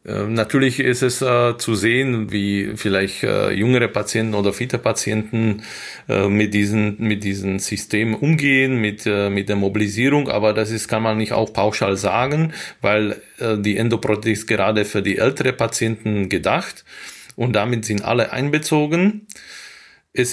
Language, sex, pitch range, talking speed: German, male, 105-125 Hz, 155 wpm